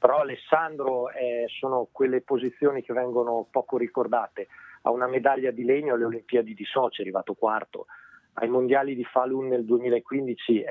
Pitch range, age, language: 115-135 Hz, 40-59, Italian